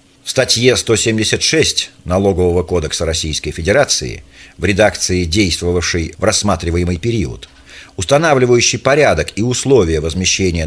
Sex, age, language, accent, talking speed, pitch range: male, 40-59, Russian, native, 100 wpm, 90-130 Hz